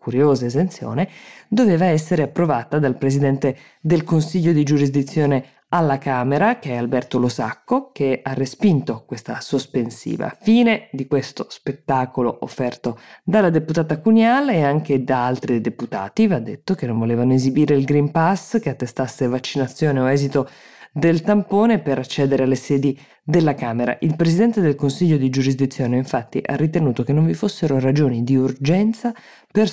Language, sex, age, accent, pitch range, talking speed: Italian, female, 20-39, native, 130-185 Hz, 150 wpm